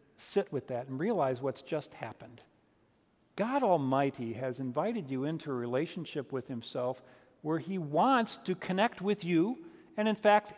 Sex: male